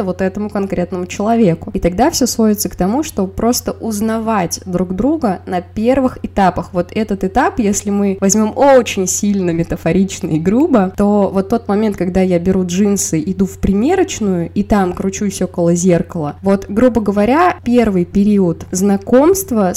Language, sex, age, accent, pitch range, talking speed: Russian, female, 20-39, native, 180-225 Hz, 155 wpm